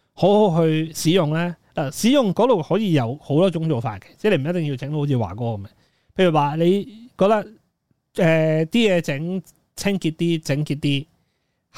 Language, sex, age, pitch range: Chinese, male, 30-49, 140-175 Hz